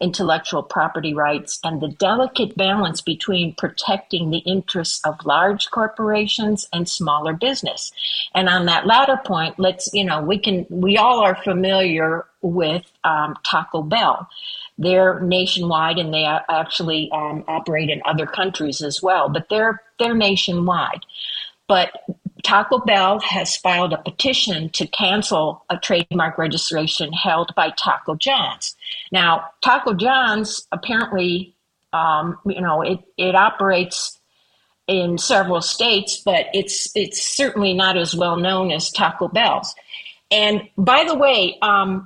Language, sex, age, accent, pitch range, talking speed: English, female, 50-69, American, 165-205 Hz, 135 wpm